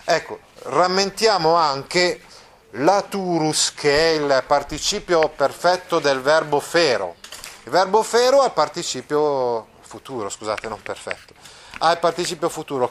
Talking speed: 115 wpm